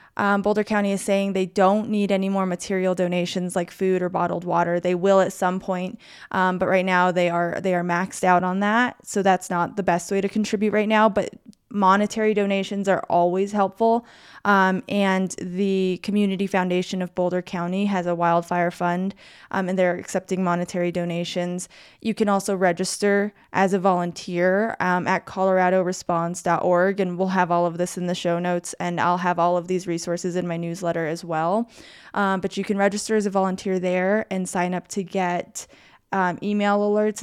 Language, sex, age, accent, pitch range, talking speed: English, female, 20-39, American, 180-200 Hz, 190 wpm